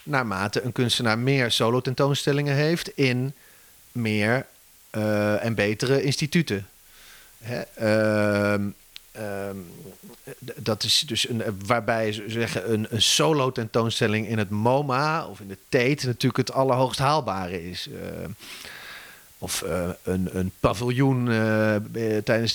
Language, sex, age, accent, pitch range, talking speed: English, male, 30-49, Dutch, 110-145 Hz, 125 wpm